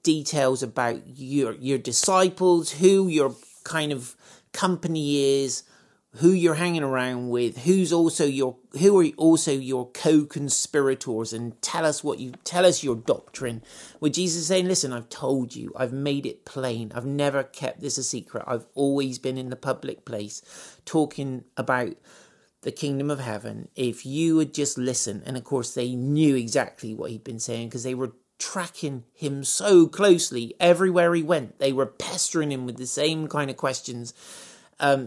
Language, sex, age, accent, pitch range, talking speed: English, male, 40-59, British, 125-160 Hz, 170 wpm